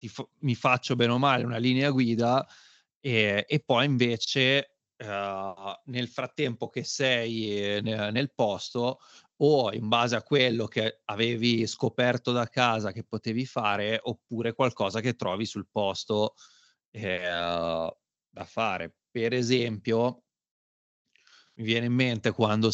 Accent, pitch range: native, 105-125 Hz